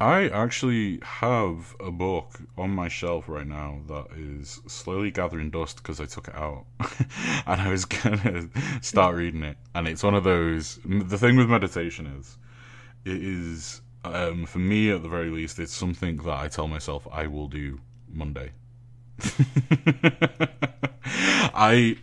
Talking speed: 160 wpm